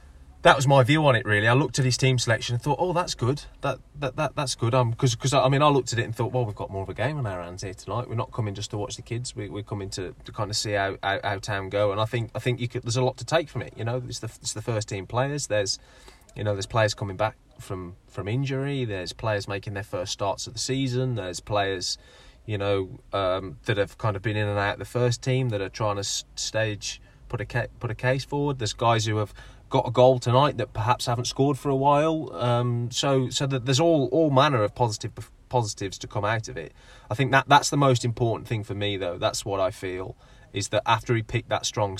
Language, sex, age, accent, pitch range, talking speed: English, male, 20-39, British, 100-130 Hz, 270 wpm